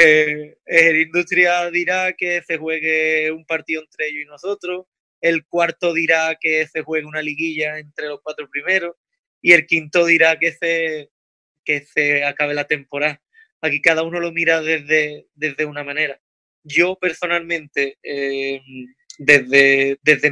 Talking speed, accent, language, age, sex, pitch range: 145 wpm, Spanish, Spanish, 20-39, male, 145-160 Hz